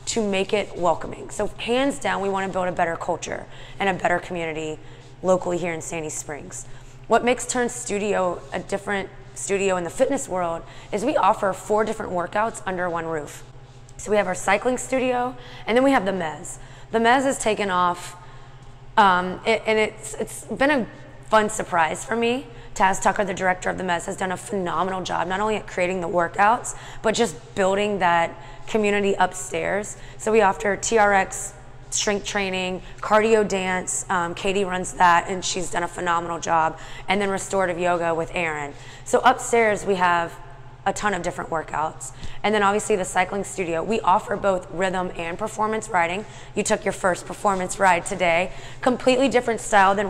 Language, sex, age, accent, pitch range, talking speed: English, female, 20-39, American, 165-205 Hz, 180 wpm